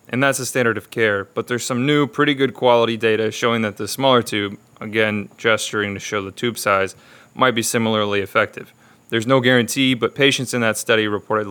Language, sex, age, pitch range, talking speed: English, male, 20-39, 105-125 Hz, 205 wpm